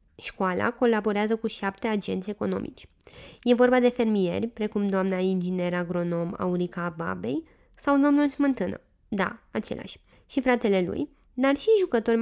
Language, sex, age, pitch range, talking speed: Romanian, female, 20-39, 210-280 Hz, 130 wpm